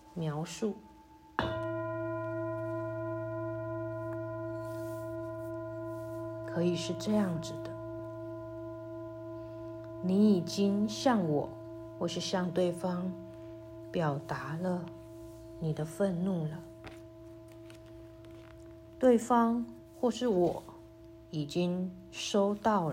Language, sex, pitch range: Chinese, female, 110-165 Hz